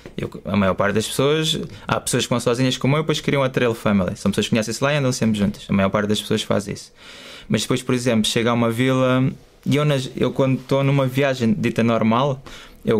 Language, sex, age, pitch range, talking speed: Portuguese, male, 20-39, 110-135 Hz, 240 wpm